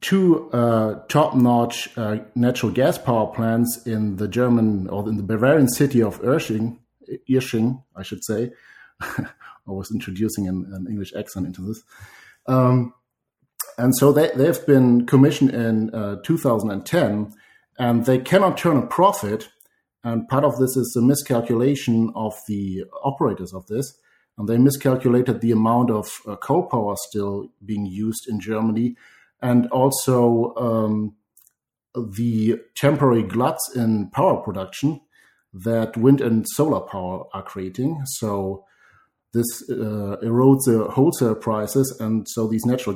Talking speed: 140 wpm